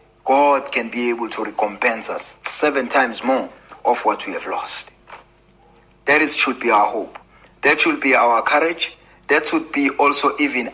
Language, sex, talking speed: English, male, 175 wpm